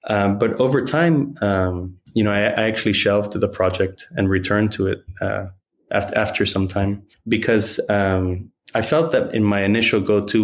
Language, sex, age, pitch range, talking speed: English, male, 20-39, 95-105 Hz, 190 wpm